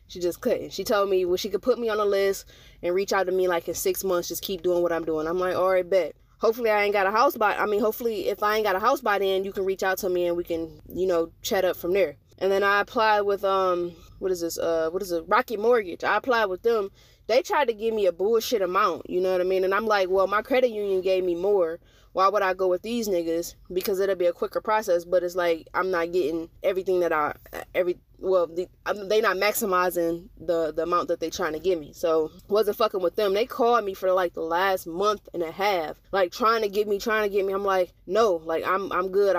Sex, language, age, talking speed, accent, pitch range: female, English, 20-39, 270 wpm, American, 175-205 Hz